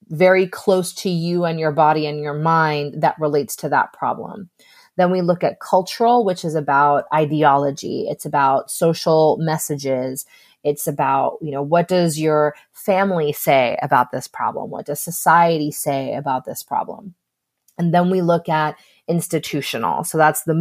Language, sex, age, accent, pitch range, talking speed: English, female, 30-49, American, 150-185 Hz, 165 wpm